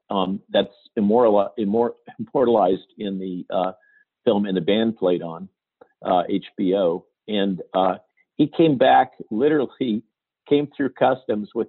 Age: 50-69